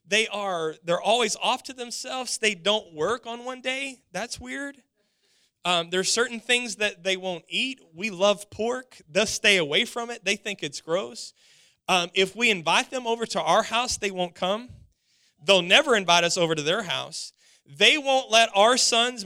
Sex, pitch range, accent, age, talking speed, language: male, 200-255 Hz, American, 30-49, 185 wpm, English